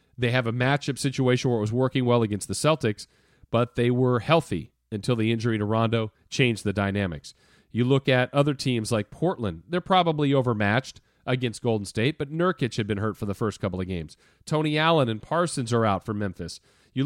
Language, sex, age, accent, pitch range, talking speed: English, male, 40-59, American, 110-145 Hz, 205 wpm